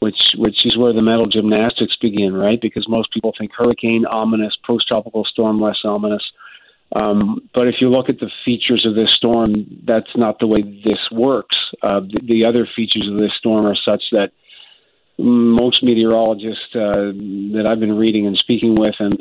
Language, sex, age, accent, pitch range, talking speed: English, male, 50-69, American, 105-120 Hz, 180 wpm